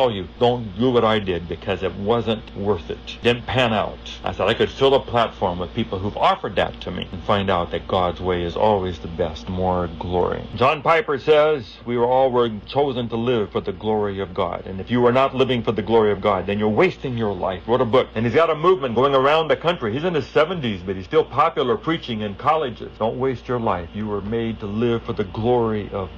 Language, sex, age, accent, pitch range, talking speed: English, male, 60-79, American, 100-125 Hz, 245 wpm